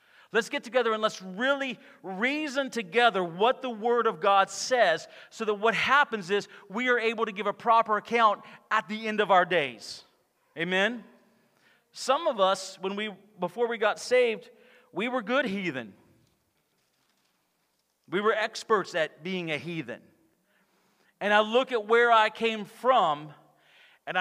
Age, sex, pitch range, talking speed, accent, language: 40-59, male, 150-220 Hz, 155 wpm, American, English